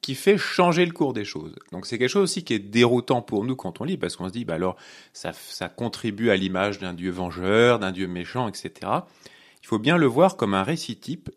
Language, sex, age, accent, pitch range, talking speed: French, male, 30-49, French, 100-145 Hz, 250 wpm